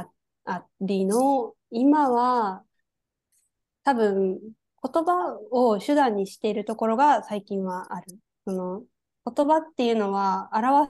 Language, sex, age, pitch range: Japanese, female, 20-39, 190-265 Hz